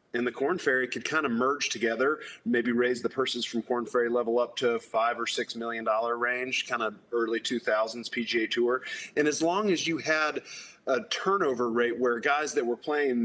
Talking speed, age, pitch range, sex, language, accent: 200 wpm, 40-59, 120-150 Hz, male, English, American